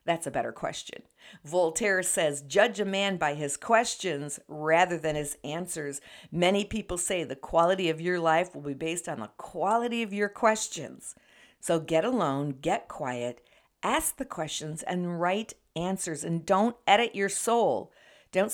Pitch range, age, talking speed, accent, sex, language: 155-195 Hz, 50-69, 160 wpm, American, female, English